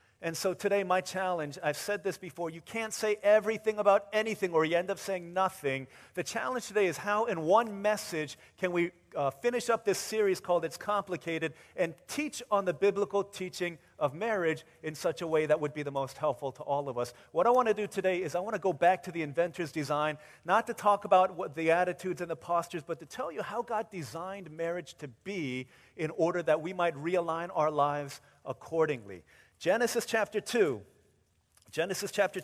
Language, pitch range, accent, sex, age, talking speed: English, 135-185 Hz, American, male, 40-59, 205 wpm